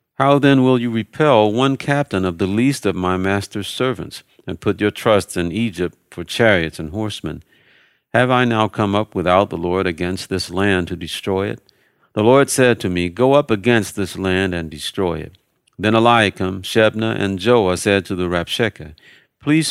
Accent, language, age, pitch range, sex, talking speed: American, English, 50-69, 90-115 Hz, male, 185 wpm